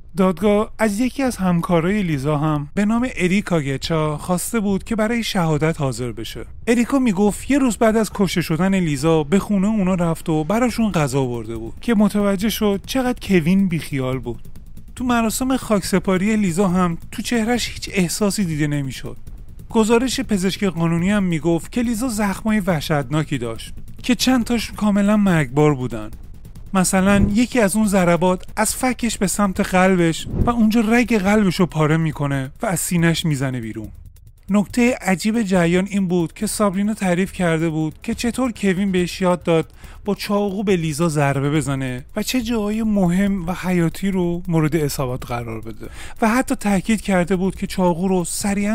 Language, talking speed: Persian, 165 wpm